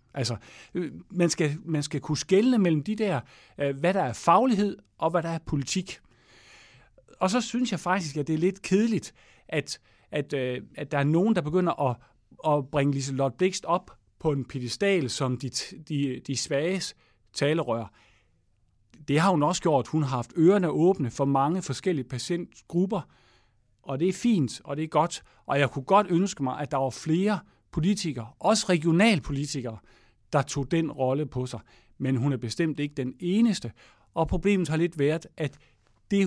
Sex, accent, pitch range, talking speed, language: male, Danish, 125-170 Hz, 175 wpm, English